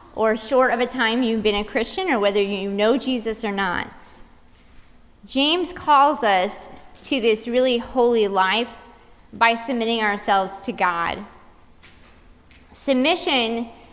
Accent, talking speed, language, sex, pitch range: American, 130 wpm, English, female, 200-245 Hz